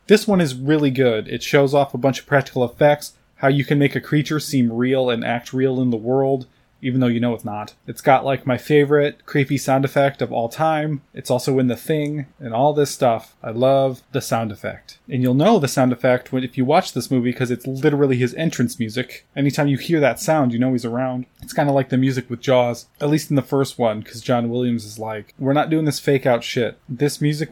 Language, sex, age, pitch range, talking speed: English, male, 20-39, 125-145 Hz, 245 wpm